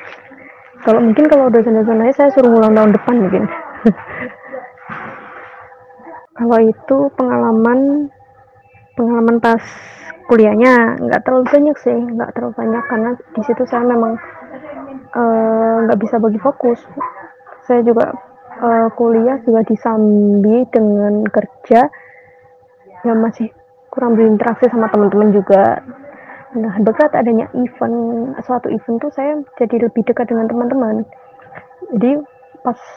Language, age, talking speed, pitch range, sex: Indonesian, 20-39, 115 wpm, 225-260 Hz, female